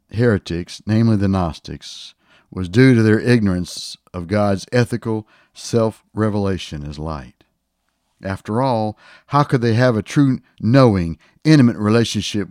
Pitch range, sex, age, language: 85-115 Hz, male, 60-79, English